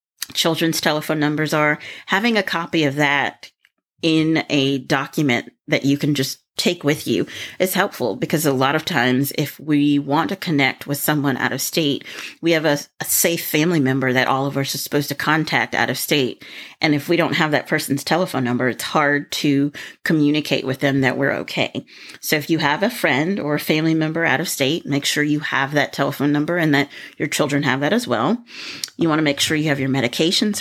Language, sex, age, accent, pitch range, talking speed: English, female, 30-49, American, 140-165 Hz, 215 wpm